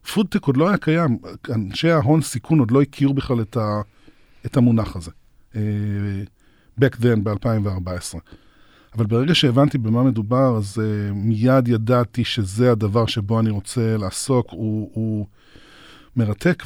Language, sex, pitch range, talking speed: Hebrew, male, 110-145 Hz, 125 wpm